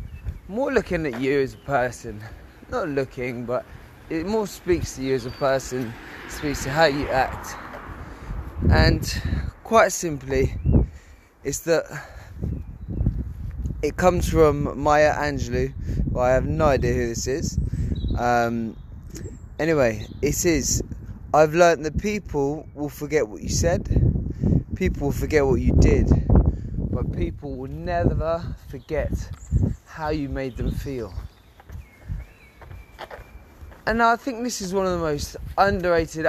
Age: 20-39